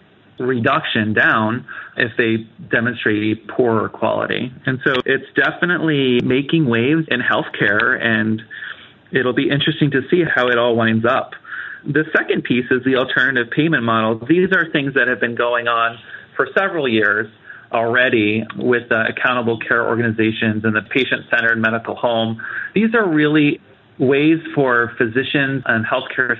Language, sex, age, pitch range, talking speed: English, male, 30-49, 115-135 Hz, 145 wpm